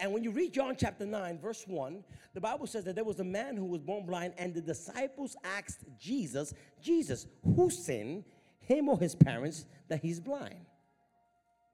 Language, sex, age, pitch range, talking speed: English, male, 50-69, 195-295 Hz, 185 wpm